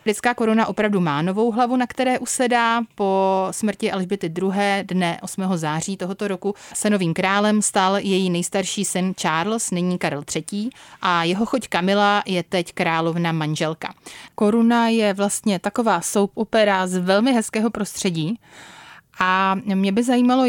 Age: 30-49